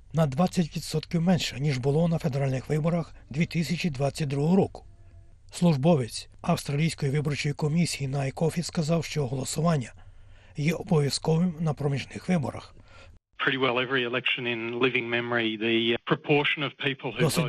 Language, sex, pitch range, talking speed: Ukrainian, male, 125-160 Hz, 85 wpm